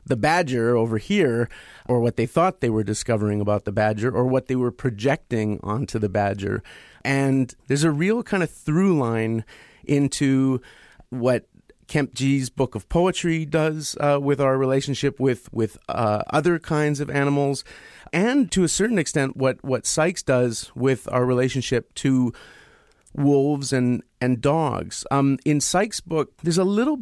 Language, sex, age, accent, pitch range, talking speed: English, male, 40-59, American, 115-140 Hz, 160 wpm